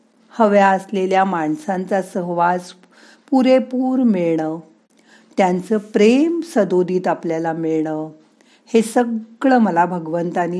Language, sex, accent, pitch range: Marathi, female, native, 175-240 Hz